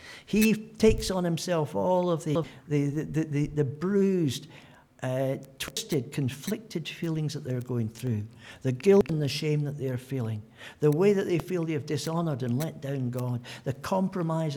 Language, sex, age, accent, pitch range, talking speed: English, male, 60-79, British, 110-150 Hz, 175 wpm